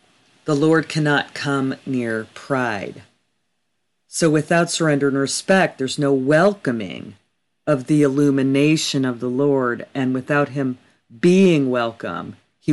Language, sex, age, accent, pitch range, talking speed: English, female, 40-59, American, 130-155 Hz, 125 wpm